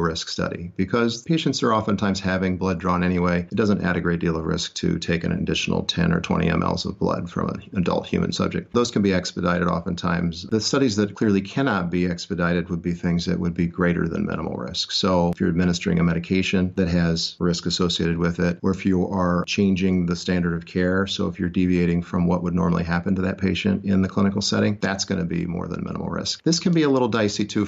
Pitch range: 90-100 Hz